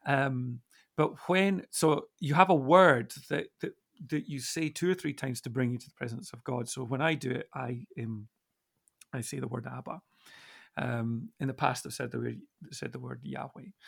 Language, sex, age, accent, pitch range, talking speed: English, male, 40-59, British, 125-165 Hz, 215 wpm